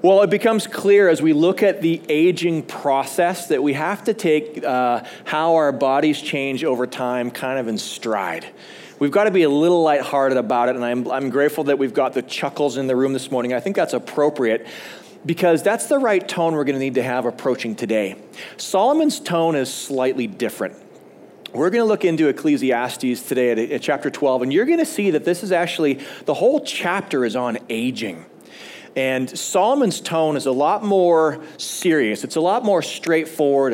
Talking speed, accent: 195 wpm, American